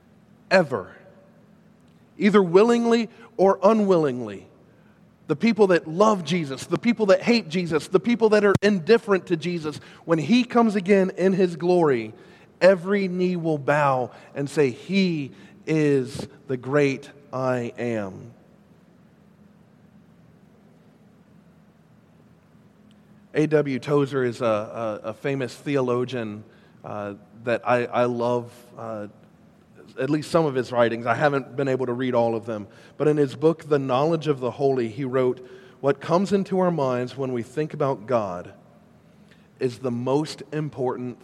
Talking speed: 140 wpm